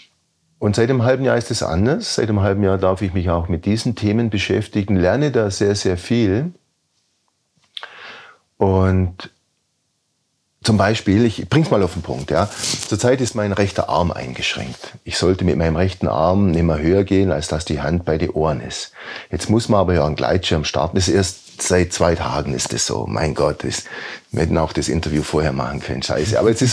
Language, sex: German, male